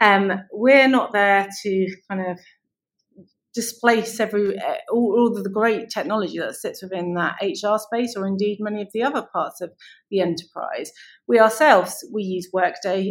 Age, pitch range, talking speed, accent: 30-49, 185-235 Hz, 160 wpm, British